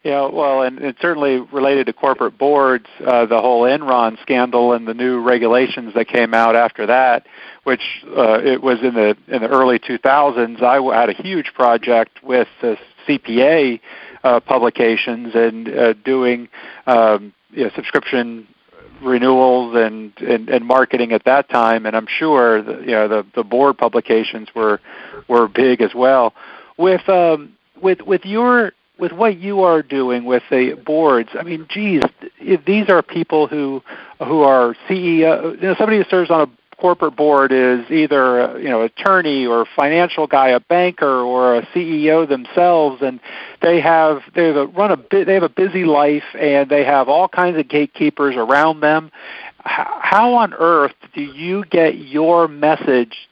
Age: 50-69